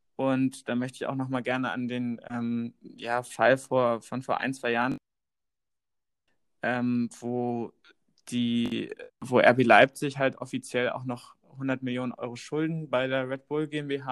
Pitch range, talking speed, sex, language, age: 120-135 Hz, 160 wpm, male, German, 20-39